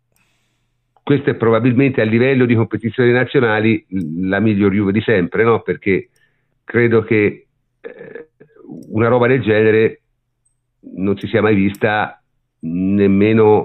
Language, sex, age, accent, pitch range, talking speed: Italian, male, 50-69, native, 100-120 Hz, 125 wpm